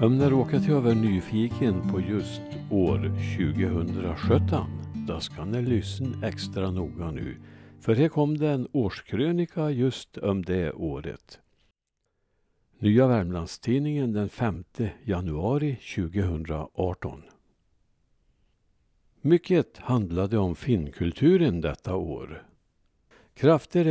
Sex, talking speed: male, 105 wpm